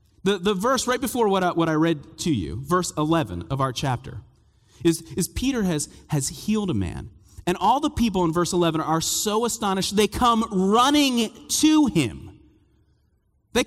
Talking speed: 180 wpm